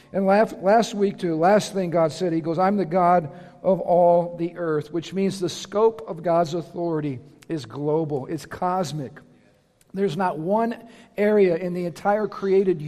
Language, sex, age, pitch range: English, male, 50-69, 165-205 Hz